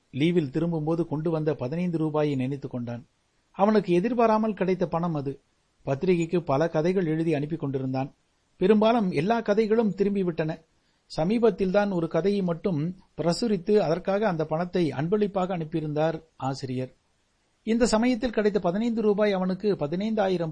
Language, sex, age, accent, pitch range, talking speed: Tamil, male, 60-79, native, 145-185 Hz, 125 wpm